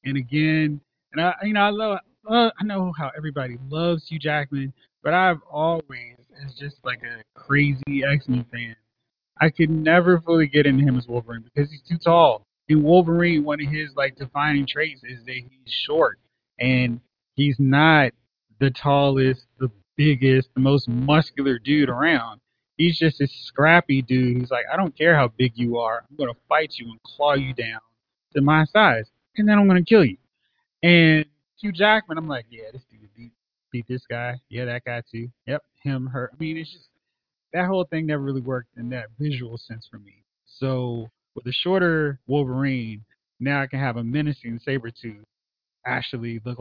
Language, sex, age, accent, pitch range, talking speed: English, male, 20-39, American, 120-155 Hz, 190 wpm